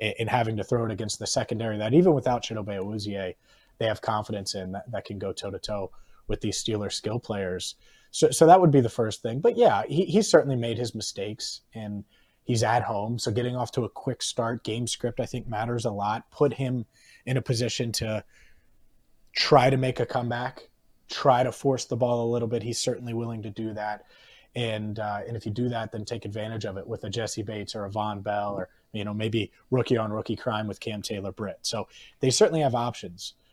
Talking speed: 220 wpm